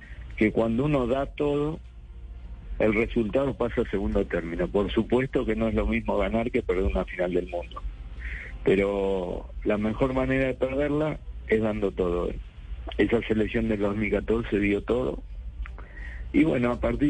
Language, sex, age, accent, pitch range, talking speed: Spanish, male, 50-69, Argentinian, 95-125 Hz, 155 wpm